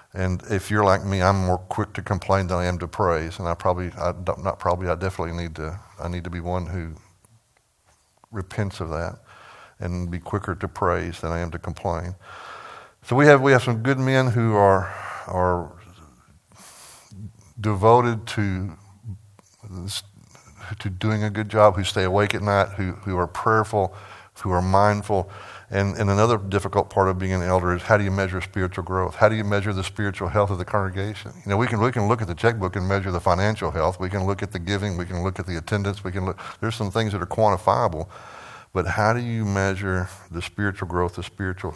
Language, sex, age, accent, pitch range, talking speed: English, male, 60-79, American, 90-105 Hz, 210 wpm